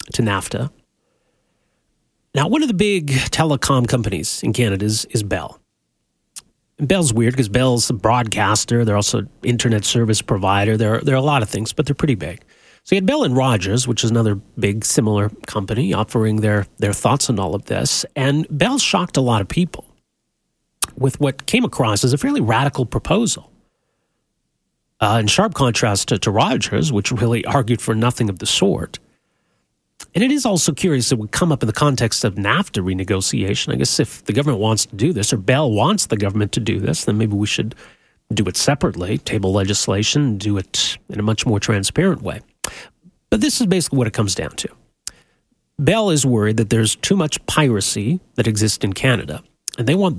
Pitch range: 110-145 Hz